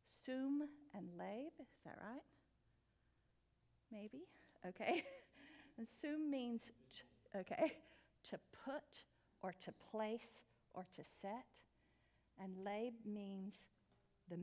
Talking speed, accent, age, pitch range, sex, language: 100 wpm, American, 50-69, 180-235 Hz, female, English